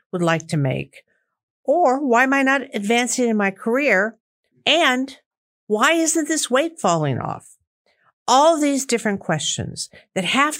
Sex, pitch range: female, 175-235 Hz